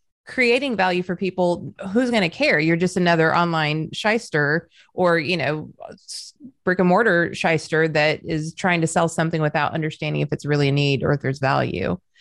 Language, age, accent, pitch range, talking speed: English, 30-49, American, 150-190 Hz, 180 wpm